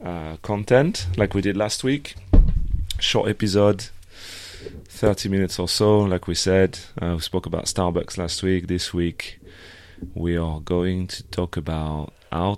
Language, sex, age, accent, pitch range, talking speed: English, male, 30-49, French, 80-95 Hz, 155 wpm